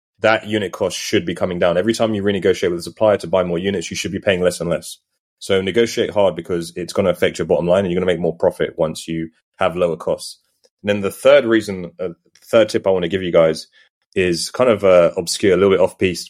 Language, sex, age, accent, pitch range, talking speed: English, male, 20-39, British, 90-110 Hz, 265 wpm